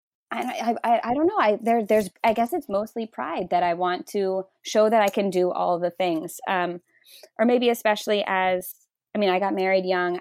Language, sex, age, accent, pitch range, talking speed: English, female, 20-39, American, 180-245 Hz, 200 wpm